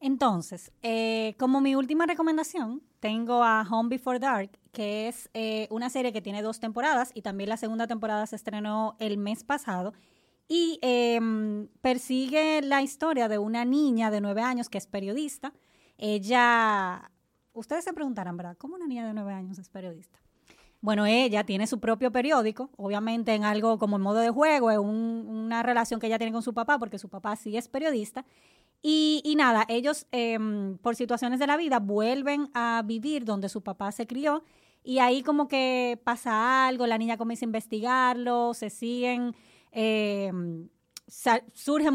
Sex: female